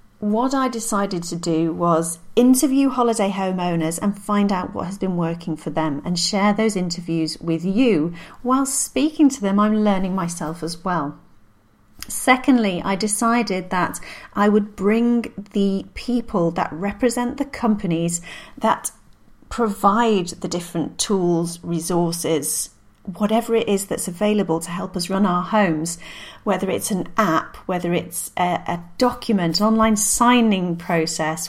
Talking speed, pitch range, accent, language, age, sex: 145 wpm, 170-220 Hz, British, English, 40-59, female